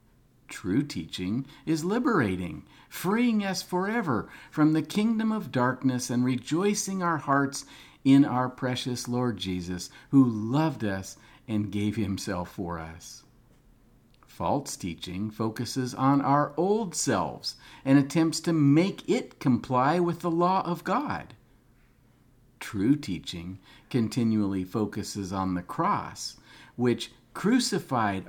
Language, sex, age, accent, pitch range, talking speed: English, male, 50-69, American, 105-140 Hz, 120 wpm